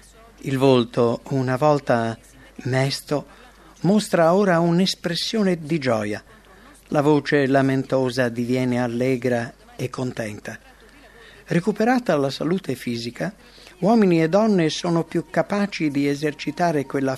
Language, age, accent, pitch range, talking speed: English, 50-69, Italian, 125-160 Hz, 105 wpm